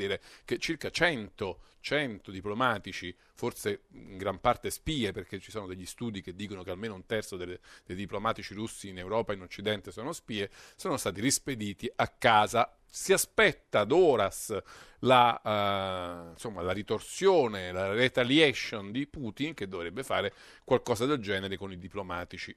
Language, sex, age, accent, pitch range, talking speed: Italian, male, 40-59, native, 95-130 Hz, 155 wpm